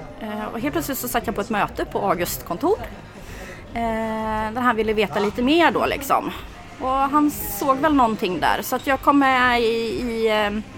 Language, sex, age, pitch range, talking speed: Swedish, female, 30-49, 205-250 Hz, 180 wpm